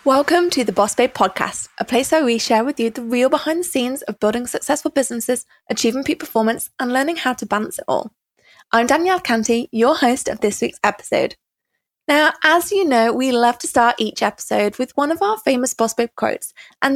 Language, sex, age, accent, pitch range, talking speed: English, female, 20-39, British, 220-290 Hz, 210 wpm